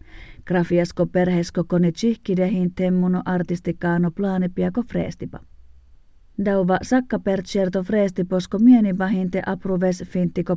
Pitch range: 175-190 Hz